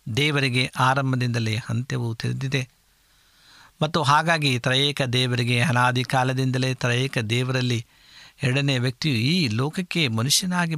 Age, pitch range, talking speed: 60-79, 120-140 Hz, 95 wpm